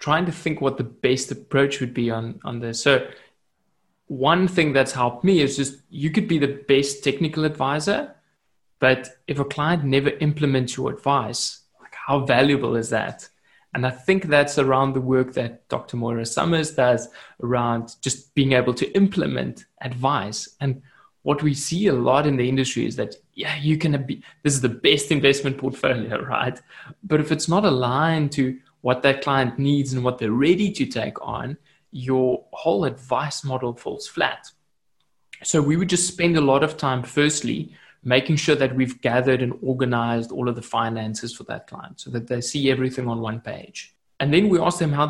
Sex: male